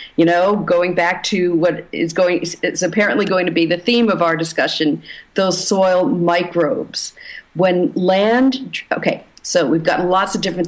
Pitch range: 170-195 Hz